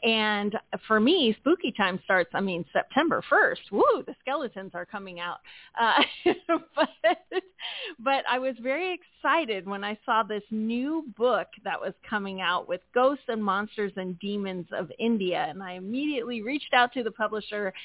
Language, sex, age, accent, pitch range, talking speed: English, female, 30-49, American, 200-265 Hz, 165 wpm